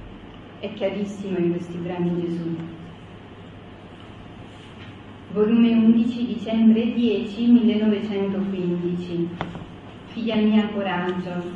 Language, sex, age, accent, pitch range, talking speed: Italian, female, 40-59, native, 185-245 Hz, 75 wpm